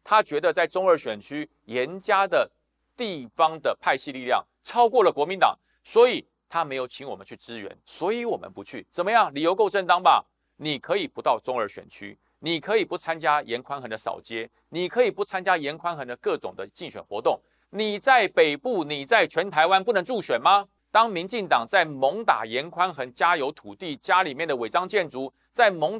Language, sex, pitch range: Chinese, male, 140-225 Hz